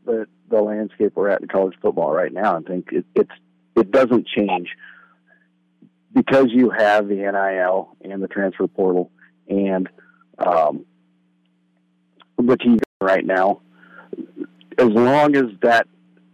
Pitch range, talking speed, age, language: 90-120 Hz, 130 wpm, 50-69, English